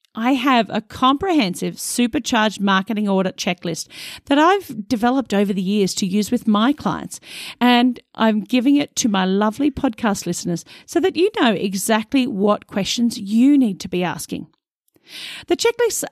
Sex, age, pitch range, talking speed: female, 40-59, 200-280 Hz, 155 wpm